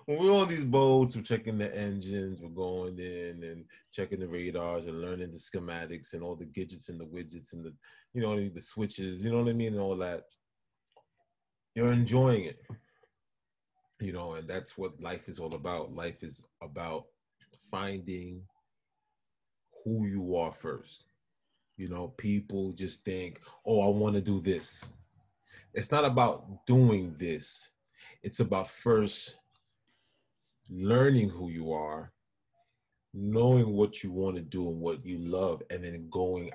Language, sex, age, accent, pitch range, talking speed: English, male, 30-49, American, 85-105 Hz, 160 wpm